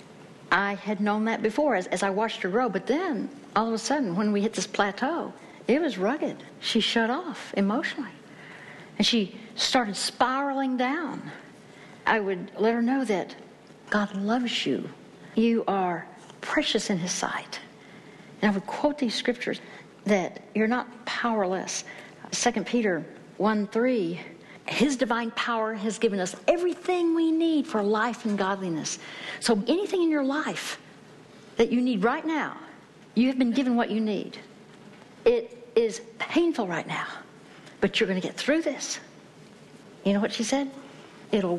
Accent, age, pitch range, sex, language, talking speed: American, 60-79, 200-265 Hz, female, English, 160 wpm